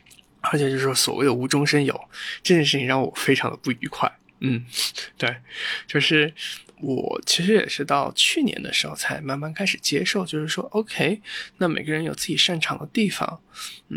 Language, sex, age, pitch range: Chinese, male, 20-39, 135-185 Hz